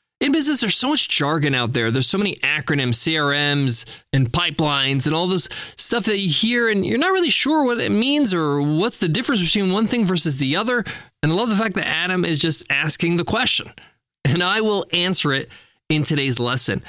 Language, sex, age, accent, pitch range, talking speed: English, male, 20-39, American, 140-205 Hz, 215 wpm